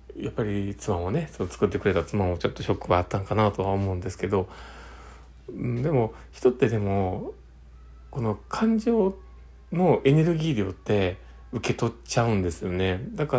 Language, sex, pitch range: Japanese, male, 90-115 Hz